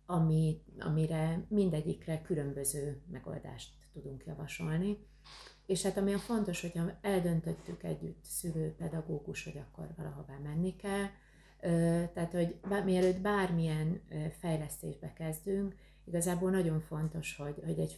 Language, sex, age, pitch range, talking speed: Hungarian, female, 30-49, 150-185 Hz, 105 wpm